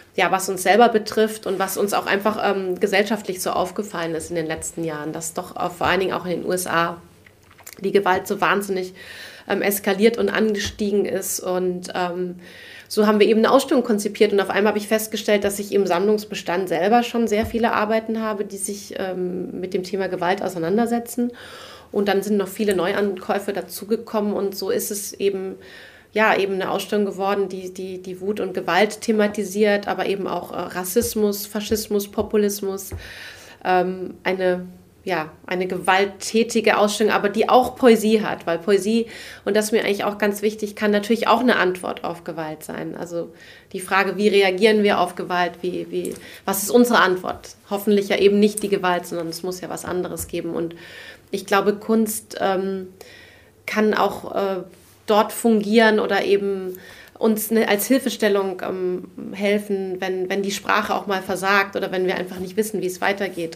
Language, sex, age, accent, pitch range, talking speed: German, female, 30-49, German, 180-215 Hz, 175 wpm